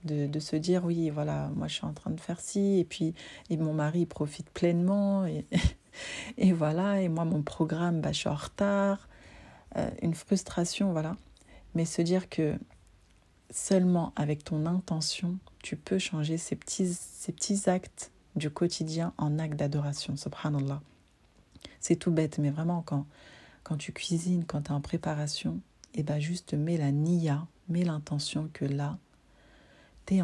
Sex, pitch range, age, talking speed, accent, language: female, 150-175 Hz, 30-49, 170 wpm, French, French